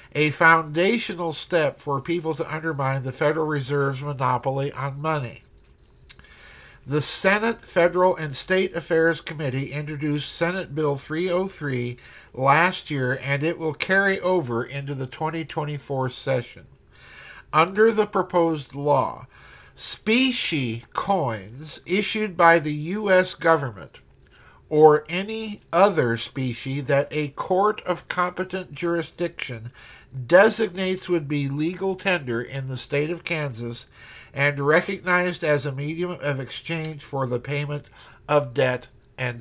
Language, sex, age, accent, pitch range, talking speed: English, male, 50-69, American, 130-170 Hz, 120 wpm